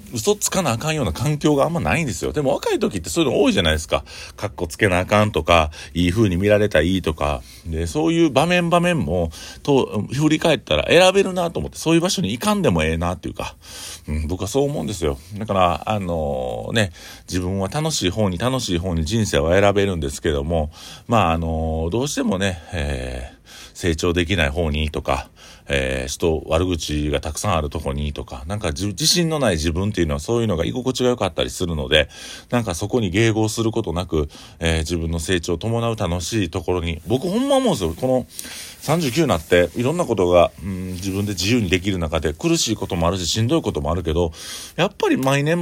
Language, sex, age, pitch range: Japanese, male, 40-59, 80-115 Hz